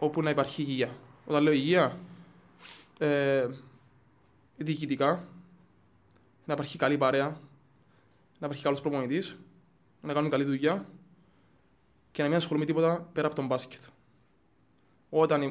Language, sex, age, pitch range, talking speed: Greek, male, 20-39, 130-160 Hz, 120 wpm